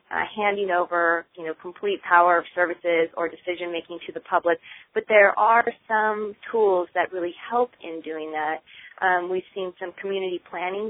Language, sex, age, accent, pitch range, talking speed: English, female, 30-49, American, 165-190 Hz, 170 wpm